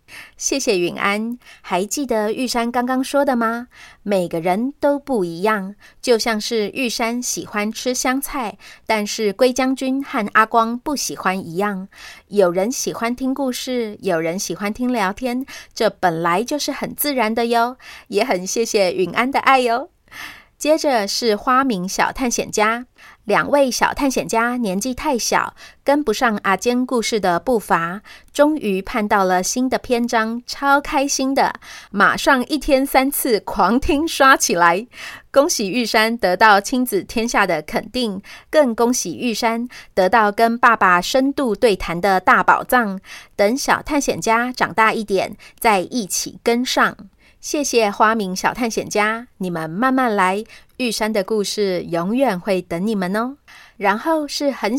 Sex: female